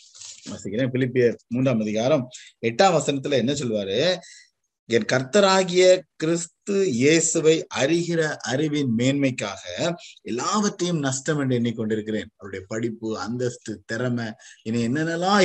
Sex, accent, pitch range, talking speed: male, native, 120-170 Hz, 90 wpm